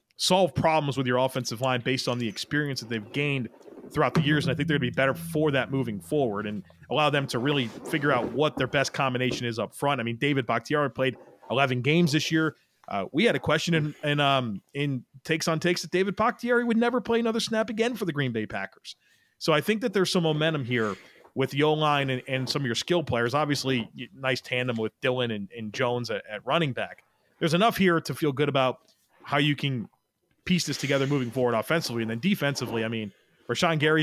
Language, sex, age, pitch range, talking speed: English, male, 30-49, 130-155 Hz, 230 wpm